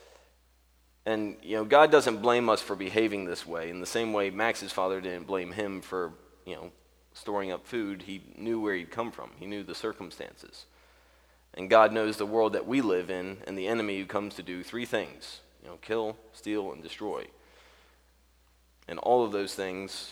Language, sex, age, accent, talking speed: English, male, 30-49, American, 195 wpm